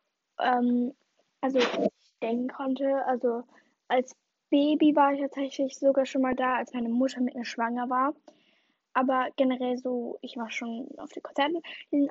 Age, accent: 10-29, German